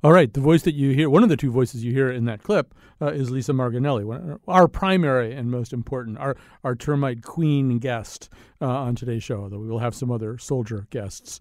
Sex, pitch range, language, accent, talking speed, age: male, 115-150 Hz, English, American, 230 wpm, 40-59